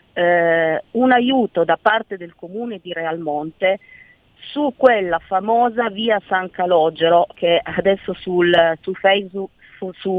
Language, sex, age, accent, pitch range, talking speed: Italian, female, 40-59, native, 165-210 Hz, 130 wpm